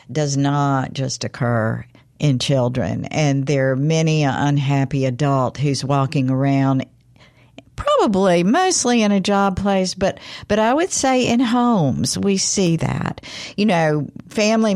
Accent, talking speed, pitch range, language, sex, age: American, 140 wpm, 135-180 Hz, English, female, 50-69